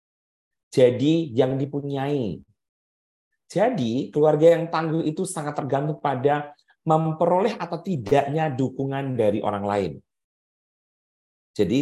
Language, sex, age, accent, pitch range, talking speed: Indonesian, male, 40-59, native, 105-150 Hz, 95 wpm